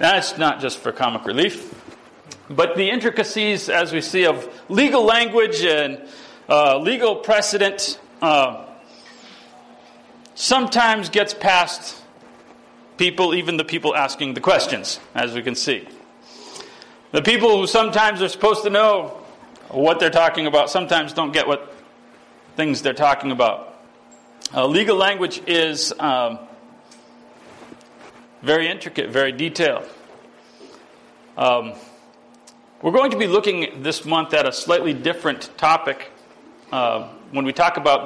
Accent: American